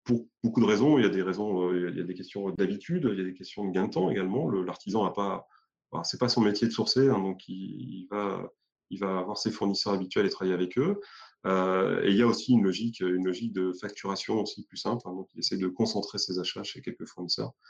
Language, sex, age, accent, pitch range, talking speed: French, male, 30-49, French, 95-120 Hz, 260 wpm